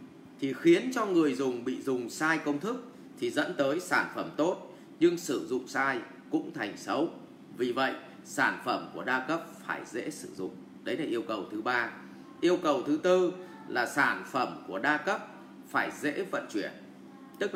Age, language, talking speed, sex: 20-39, English, 190 wpm, male